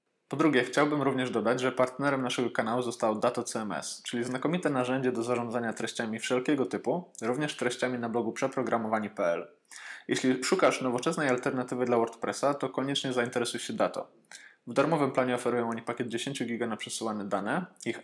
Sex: male